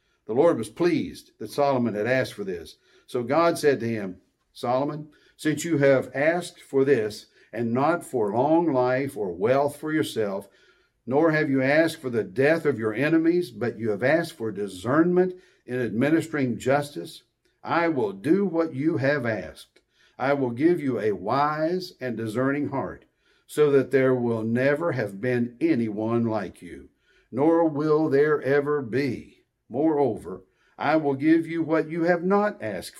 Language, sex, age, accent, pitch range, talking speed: English, male, 60-79, American, 125-160 Hz, 165 wpm